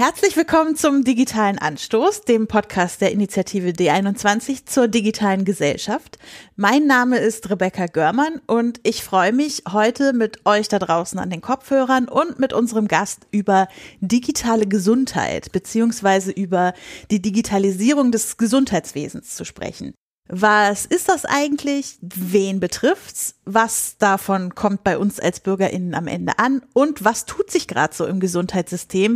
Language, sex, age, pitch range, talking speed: German, female, 30-49, 185-255 Hz, 140 wpm